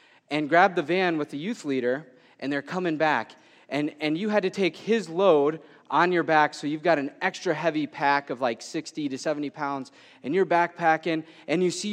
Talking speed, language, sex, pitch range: 210 wpm, English, male, 140-210 Hz